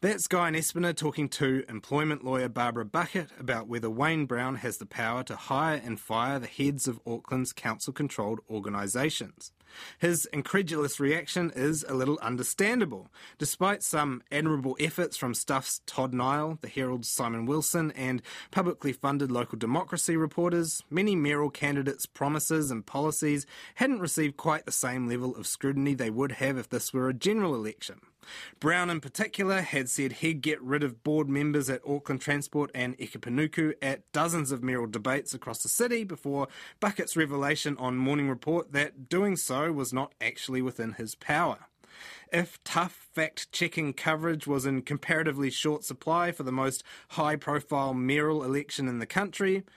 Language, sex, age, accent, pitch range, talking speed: English, male, 30-49, Australian, 130-160 Hz, 160 wpm